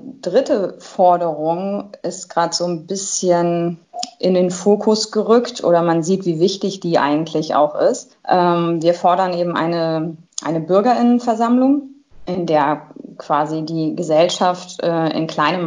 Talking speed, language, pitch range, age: 135 wpm, German, 165-200 Hz, 20-39